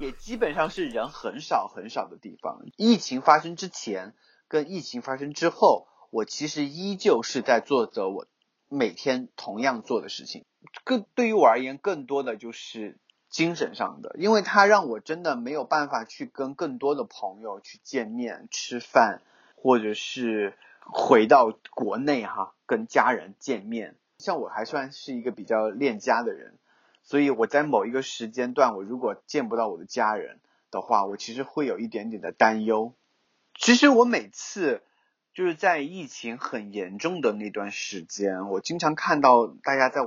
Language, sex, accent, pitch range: Chinese, male, native, 115-170 Hz